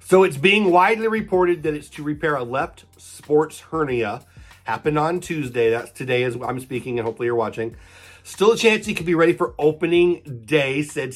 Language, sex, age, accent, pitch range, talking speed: English, male, 40-59, American, 120-165 Hz, 195 wpm